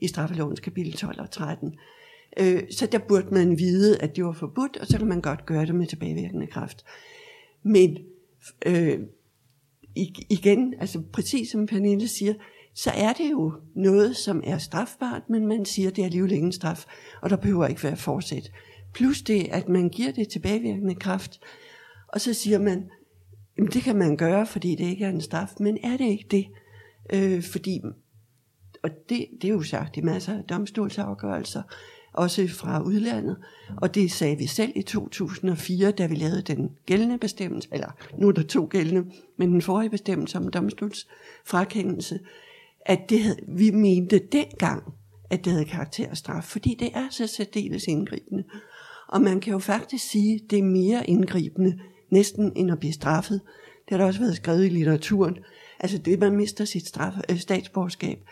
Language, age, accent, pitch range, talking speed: Danish, 60-79, native, 175-210 Hz, 175 wpm